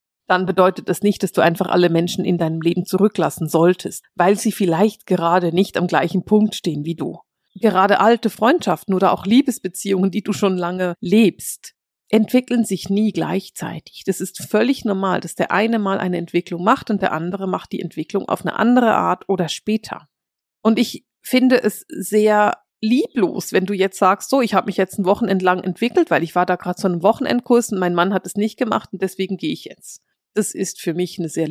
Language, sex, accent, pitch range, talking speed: German, female, German, 180-215 Hz, 205 wpm